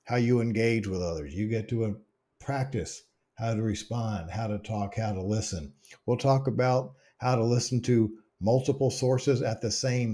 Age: 50-69